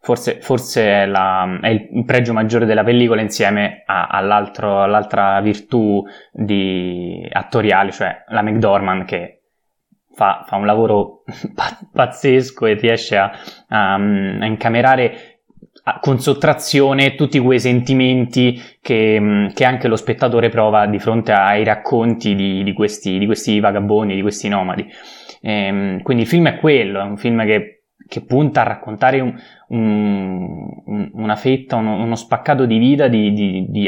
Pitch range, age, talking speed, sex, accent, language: 105-125 Hz, 20-39, 140 wpm, male, native, Italian